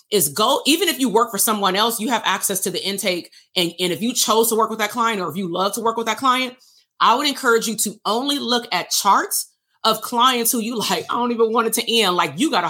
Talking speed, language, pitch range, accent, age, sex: 280 wpm, English, 170-230 Hz, American, 30-49, female